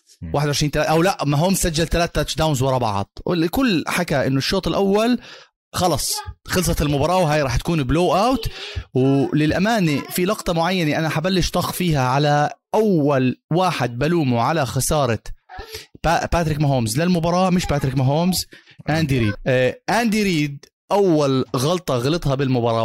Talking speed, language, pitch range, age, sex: 130 wpm, Arabic, 135-185 Hz, 30-49, male